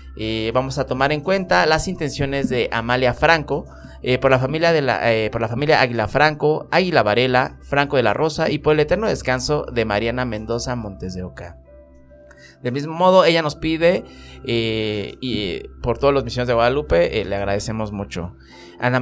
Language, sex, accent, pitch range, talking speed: Spanish, male, Mexican, 110-150 Hz, 185 wpm